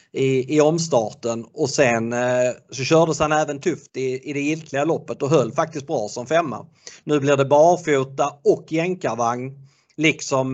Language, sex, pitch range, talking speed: Swedish, male, 120-145 Hz, 165 wpm